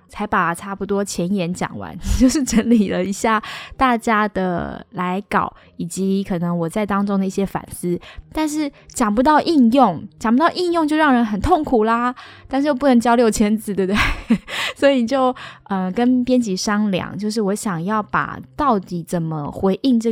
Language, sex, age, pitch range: Chinese, female, 10-29, 190-240 Hz